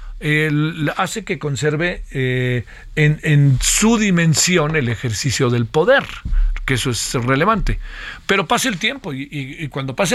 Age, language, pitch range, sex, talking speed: 50-69, Spanish, 130-175 Hz, male, 155 wpm